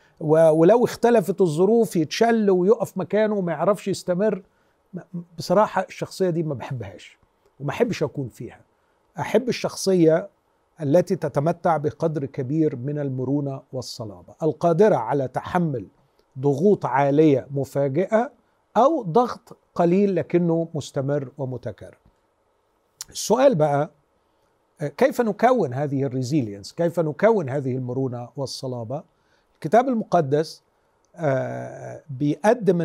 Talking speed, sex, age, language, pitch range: 95 wpm, male, 50-69, Arabic, 145-200 Hz